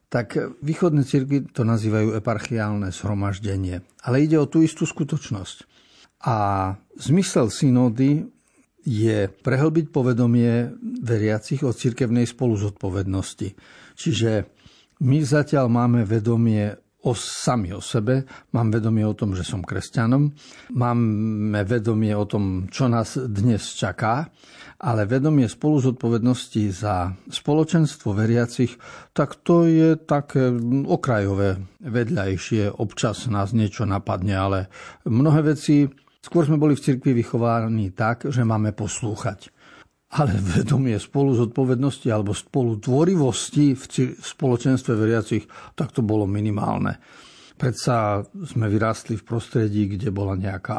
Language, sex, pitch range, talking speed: Slovak, male, 105-135 Hz, 115 wpm